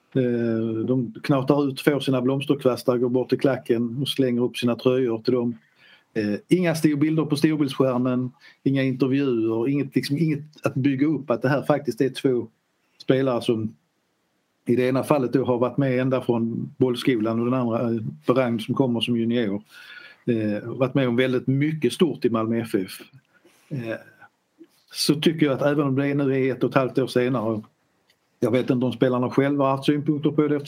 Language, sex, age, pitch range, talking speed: Swedish, male, 50-69, 120-145 Hz, 180 wpm